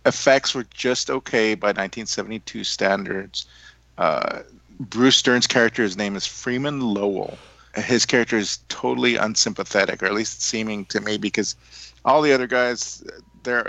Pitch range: 95-110 Hz